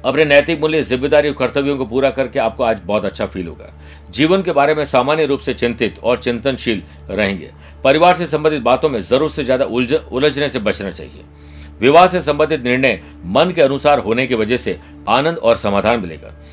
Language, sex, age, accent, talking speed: Hindi, male, 50-69, native, 190 wpm